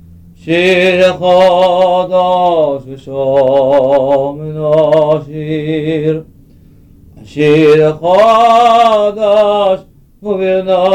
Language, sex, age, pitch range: Russian, male, 50-69, 175-210 Hz